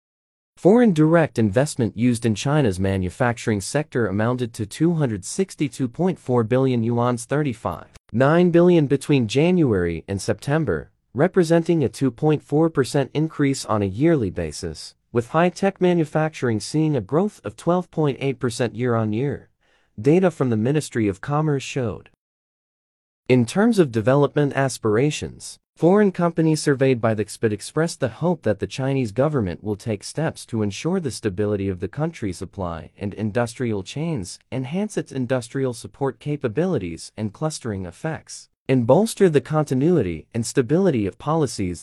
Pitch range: 105-155 Hz